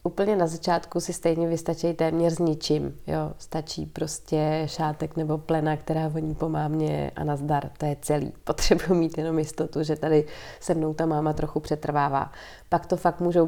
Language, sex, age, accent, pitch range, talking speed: Czech, female, 30-49, native, 160-180 Hz, 180 wpm